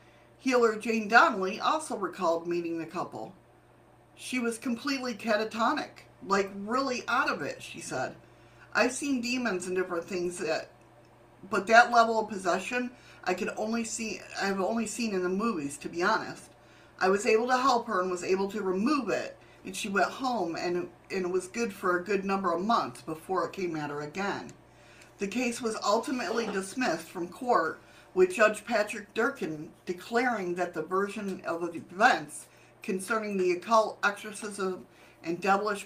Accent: American